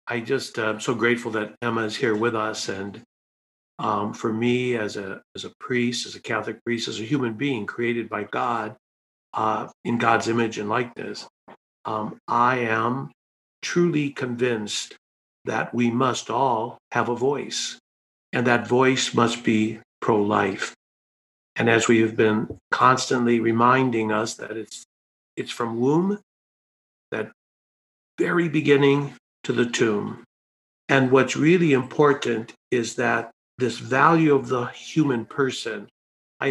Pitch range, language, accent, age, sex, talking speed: 110-130 Hz, English, American, 50-69, male, 145 wpm